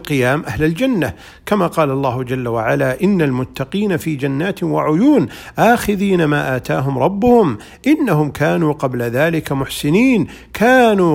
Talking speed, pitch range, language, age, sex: 125 wpm, 130-165 Hz, Arabic, 50-69, male